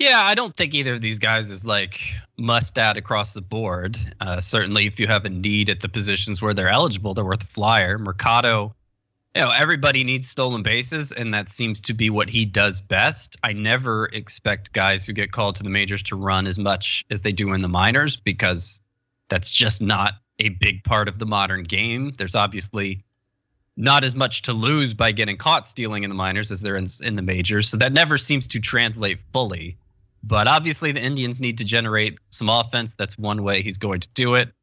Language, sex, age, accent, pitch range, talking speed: English, male, 20-39, American, 100-120 Hz, 210 wpm